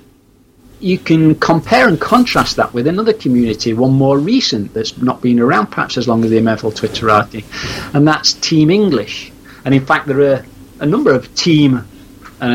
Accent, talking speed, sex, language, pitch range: British, 175 wpm, male, English, 115-165 Hz